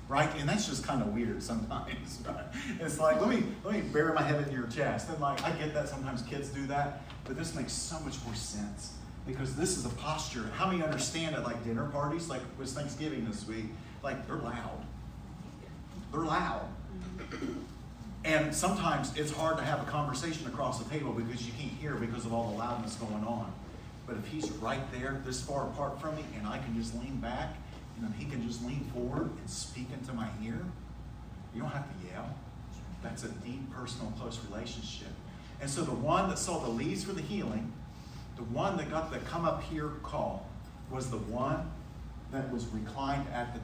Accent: American